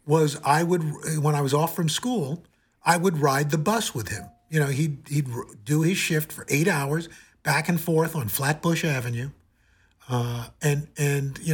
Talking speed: 185 wpm